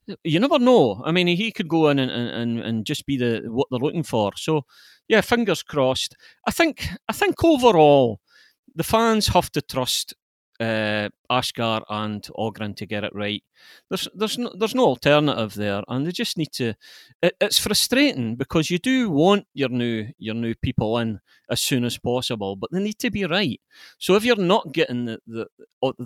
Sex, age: male, 40-59